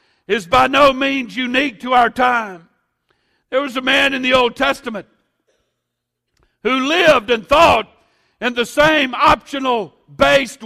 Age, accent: 60-79, American